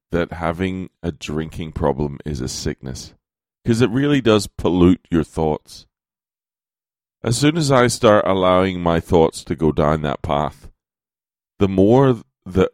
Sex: male